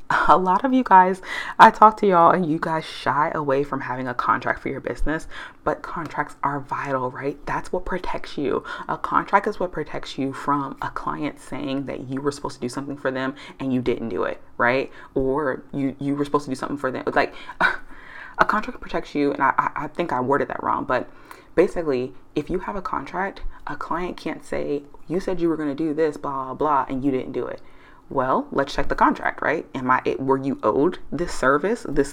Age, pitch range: 20-39, 135-185 Hz